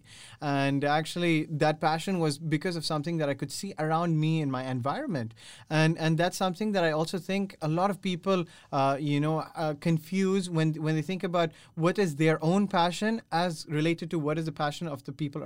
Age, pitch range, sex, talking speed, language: 20-39, 140-170 Hz, male, 205 wpm, English